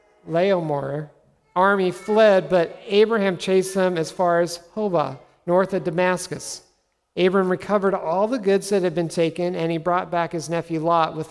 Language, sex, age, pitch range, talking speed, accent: English, male, 50-69, 160-200 Hz, 165 wpm, American